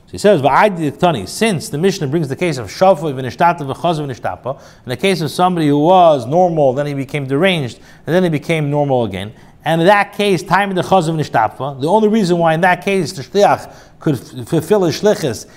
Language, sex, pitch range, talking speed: English, male, 145-195 Hz, 180 wpm